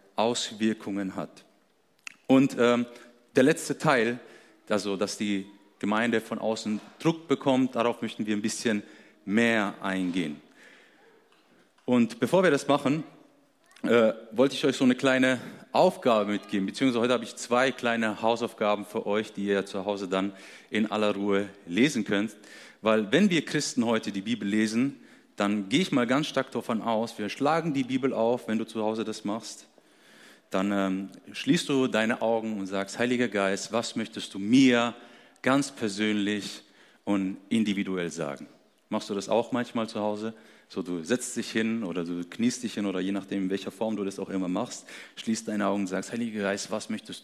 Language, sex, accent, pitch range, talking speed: German, male, German, 100-120 Hz, 175 wpm